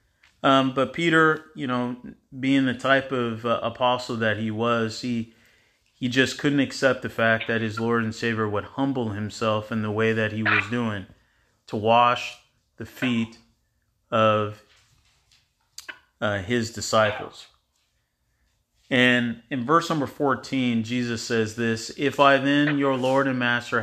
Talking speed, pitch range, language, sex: 150 wpm, 110-125 Hz, English, male